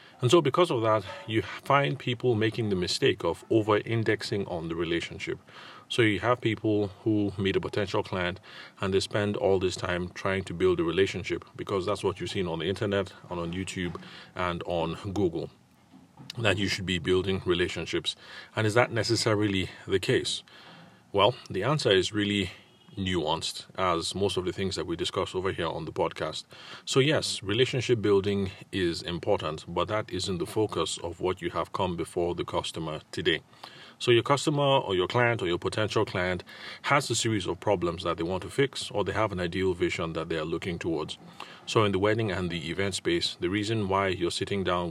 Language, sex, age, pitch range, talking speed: English, male, 30-49, 90-110 Hz, 195 wpm